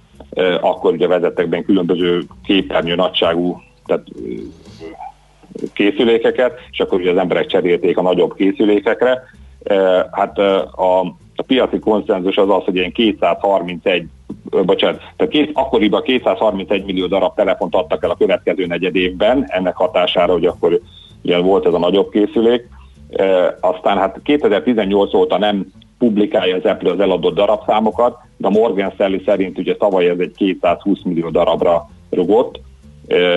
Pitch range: 90-110 Hz